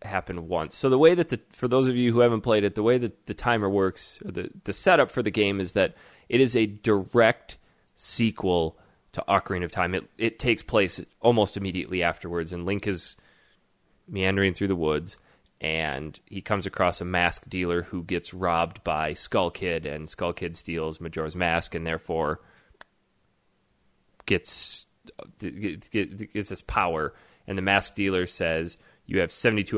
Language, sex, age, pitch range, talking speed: English, male, 20-39, 85-105 Hz, 175 wpm